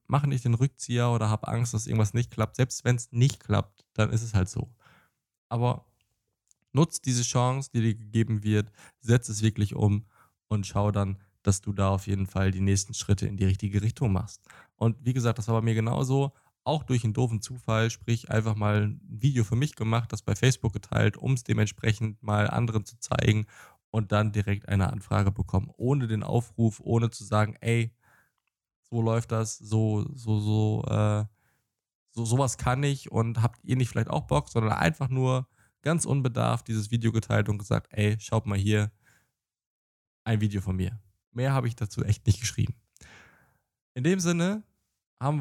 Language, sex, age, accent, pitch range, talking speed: German, male, 20-39, German, 105-130 Hz, 190 wpm